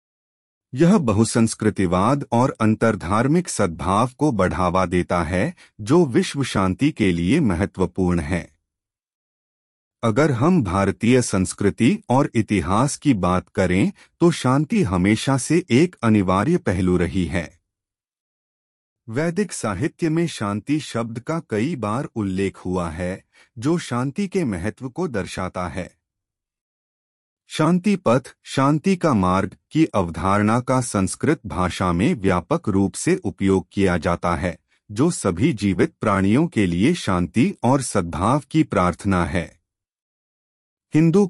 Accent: native